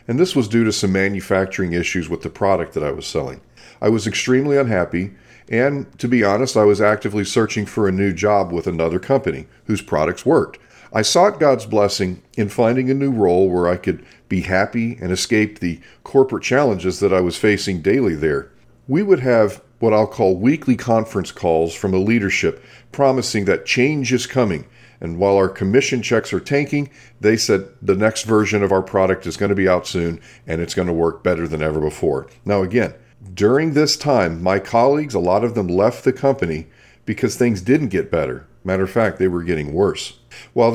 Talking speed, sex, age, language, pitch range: 200 wpm, male, 40-59, English, 95-125 Hz